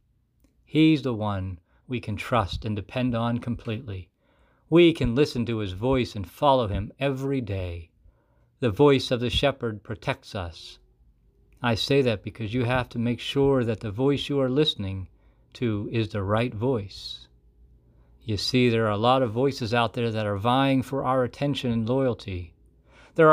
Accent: American